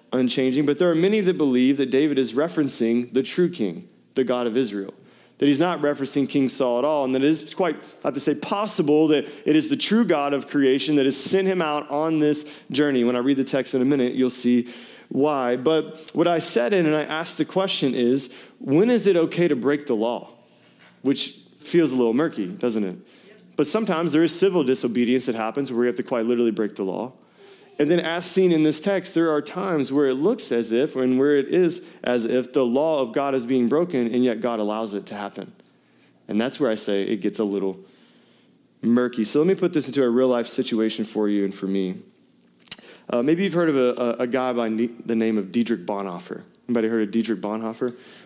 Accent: American